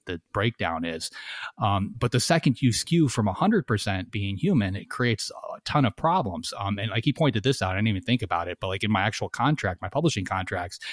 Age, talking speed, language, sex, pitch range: 30-49, 225 wpm, English, male, 95-120 Hz